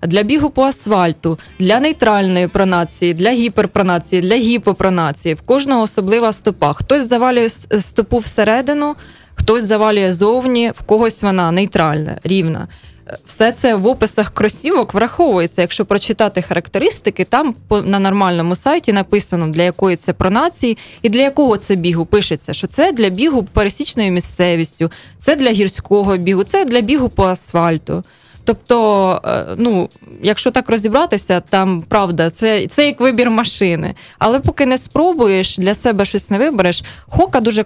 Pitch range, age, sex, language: 185-230 Hz, 20-39, female, Ukrainian